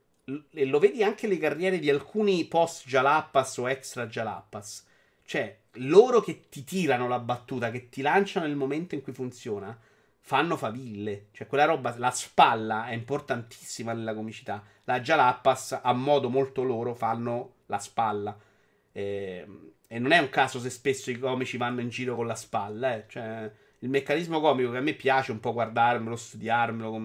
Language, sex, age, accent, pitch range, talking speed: Italian, male, 30-49, native, 120-155 Hz, 170 wpm